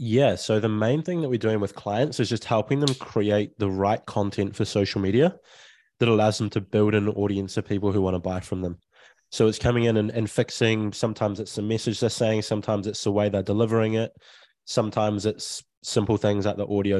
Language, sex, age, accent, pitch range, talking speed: English, male, 20-39, Australian, 100-115 Hz, 220 wpm